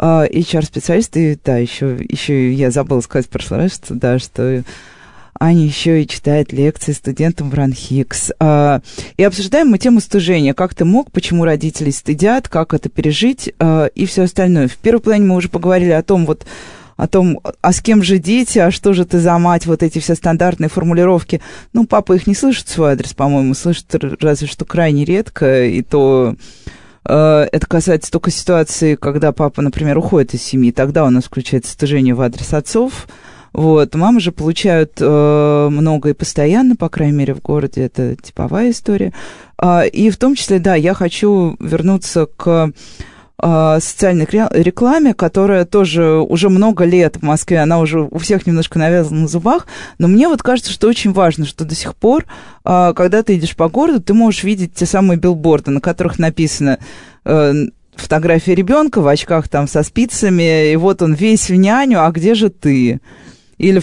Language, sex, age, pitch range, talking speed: Russian, female, 20-39, 145-190 Hz, 170 wpm